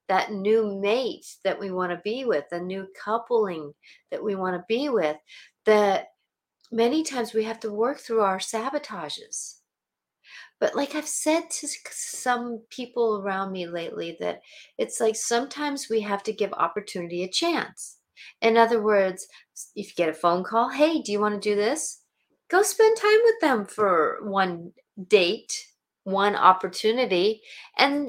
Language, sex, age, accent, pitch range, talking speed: English, female, 40-59, American, 200-290 Hz, 160 wpm